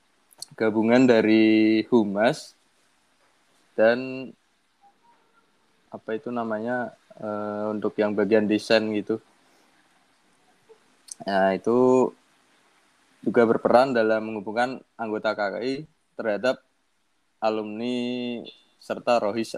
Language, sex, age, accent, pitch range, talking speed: Indonesian, male, 20-39, native, 100-115 Hz, 80 wpm